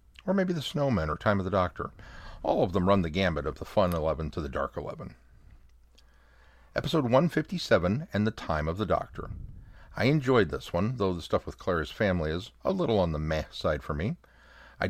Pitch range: 75-105 Hz